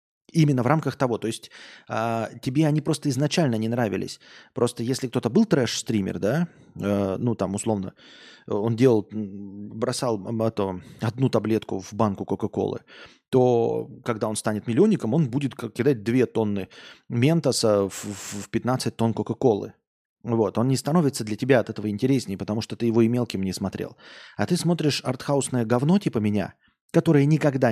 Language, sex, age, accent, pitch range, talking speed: Russian, male, 30-49, native, 110-145 Hz, 160 wpm